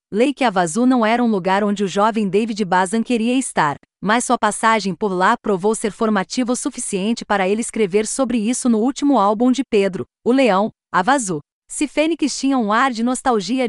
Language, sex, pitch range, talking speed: Portuguese, female, 200-255 Hz, 195 wpm